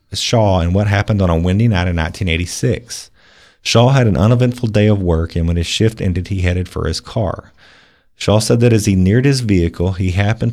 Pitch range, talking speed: 85-110 Hz, 210 wpm